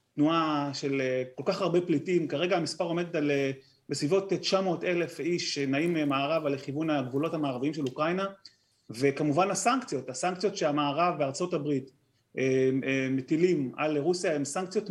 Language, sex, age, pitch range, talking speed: Hebrew, male, 30-49, 145-195 Hz, 125 wpm